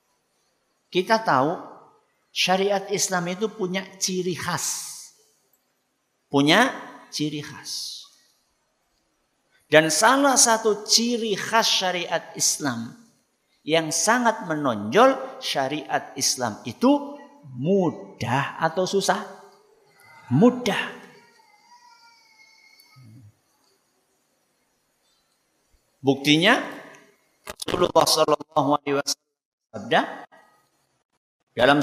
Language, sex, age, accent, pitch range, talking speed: Indonesian, male, 50-69, native, 150-235 Hz, 55 wpm